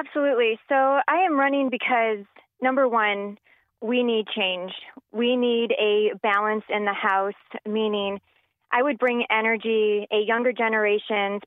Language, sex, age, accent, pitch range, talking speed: English, female, 20-39, American, 200-230 Hz, 135 wpm